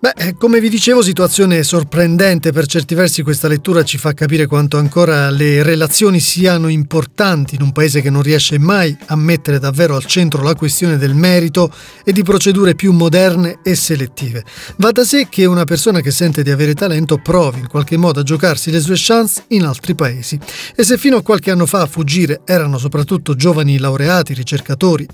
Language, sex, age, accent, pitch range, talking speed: Italian, male, 30-49, native, 150-190 Hz, 190 wpm